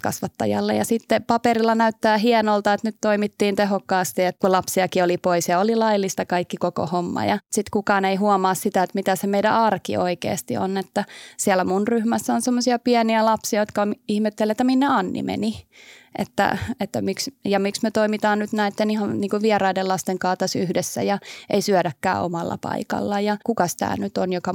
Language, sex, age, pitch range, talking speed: Finnish, female, 20-39, 185-215 Hz, 180 wpm